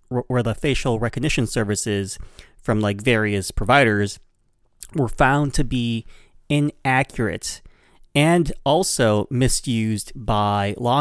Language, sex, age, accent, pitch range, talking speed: English, male, 30-49, American, 105-130 Hz, 105 wpm